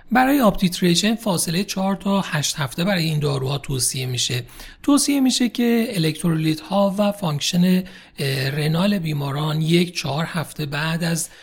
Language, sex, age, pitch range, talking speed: Persian, male, 40-59, 135-180 Hz, 130 wpm